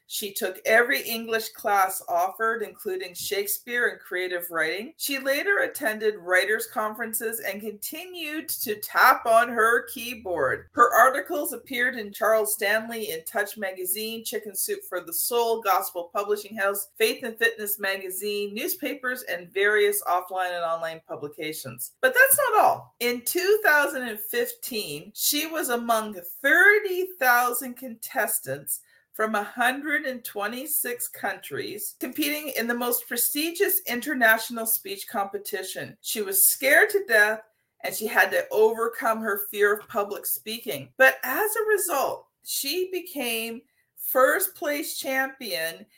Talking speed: 130 wpm